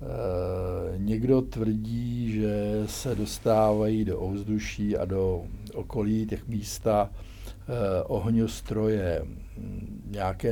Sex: male